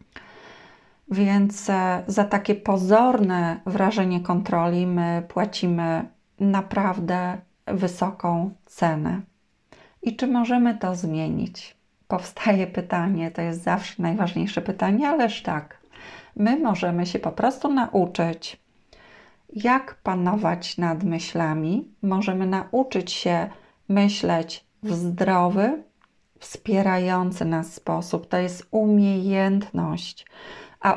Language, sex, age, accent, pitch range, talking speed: Polish, female, 30-49, native, 175-205 Hz, 95 wpm